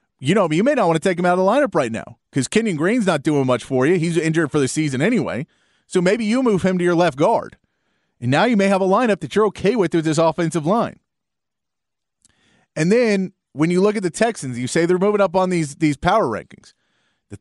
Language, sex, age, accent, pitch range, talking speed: English, male, 30-49, American, 140-195 Hz, 250 wpm